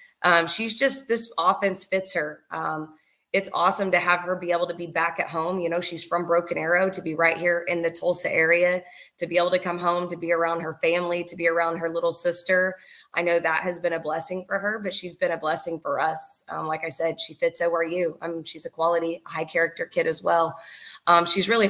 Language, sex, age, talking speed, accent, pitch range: English, female, 20-39, 245 wpm, American, 170-200 Hz